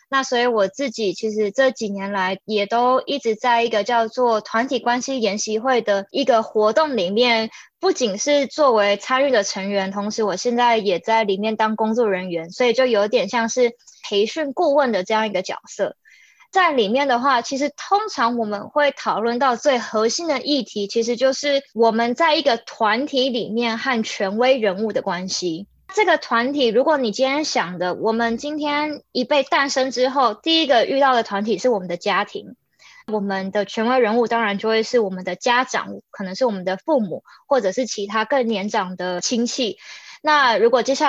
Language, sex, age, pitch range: Chinese, female, 20-39, 215-280 Hz